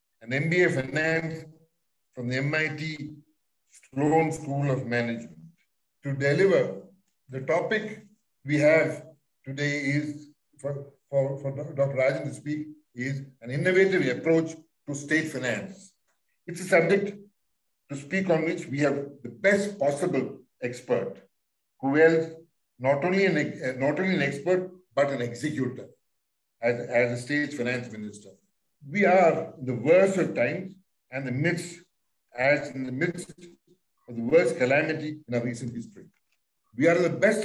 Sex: male